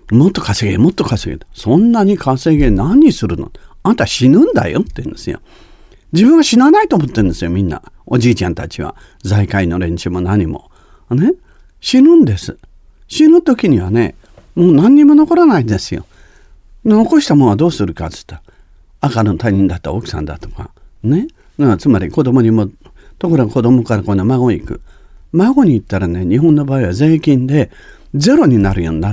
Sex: male